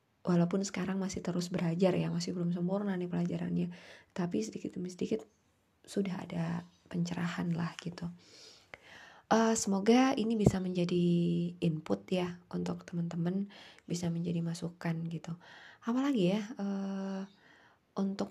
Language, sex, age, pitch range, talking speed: Indonesian, female, 20-39, 170-200 Hz, 120 wpm